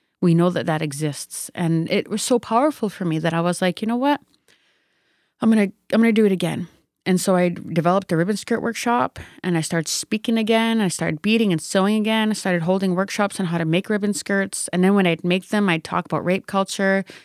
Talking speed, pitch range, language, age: 230 wpm, 170-205 Hz, English, 30-49